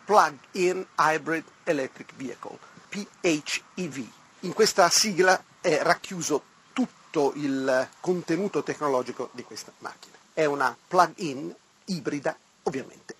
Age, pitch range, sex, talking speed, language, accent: 40-59, 135-185 Hz, male, 100 wpm, Italian, native